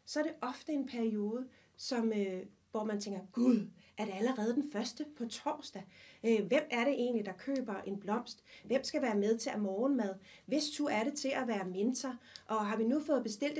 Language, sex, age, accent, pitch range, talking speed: Danish, female, 30-49, native, 210-265 Hz, 205 wpm